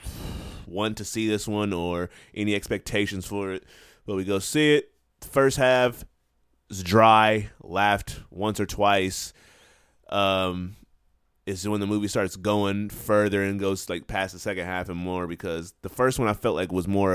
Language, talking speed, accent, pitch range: English, 170 wpm, American, 85-110 Hz